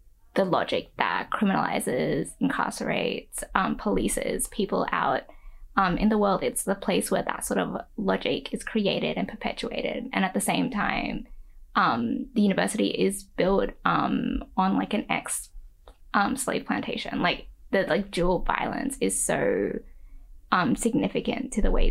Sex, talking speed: female, 150 wpm